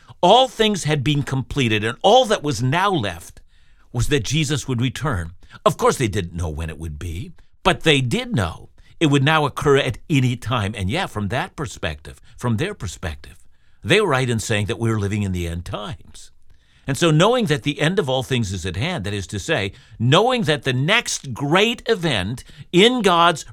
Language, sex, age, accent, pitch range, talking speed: English, male, 50-69, American, 110-165 Hz, 205 wpm